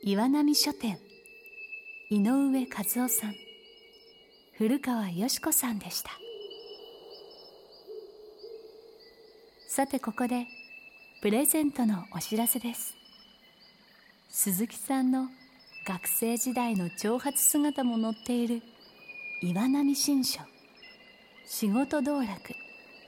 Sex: female